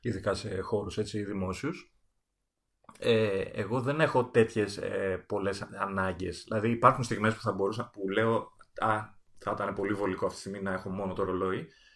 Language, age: Greek, 30-49